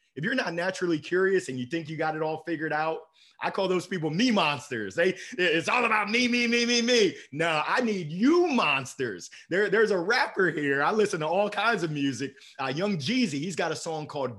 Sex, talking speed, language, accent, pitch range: male, 225 wpm, English, American, 150-210 Hz